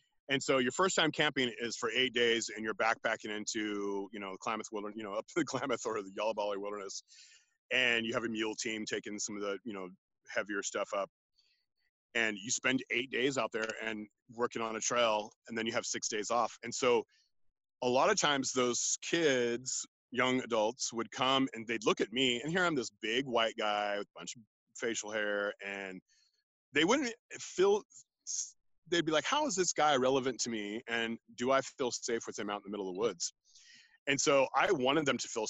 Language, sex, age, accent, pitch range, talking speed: English, male, 30-49, American, 110-155 Hz, 215 wpm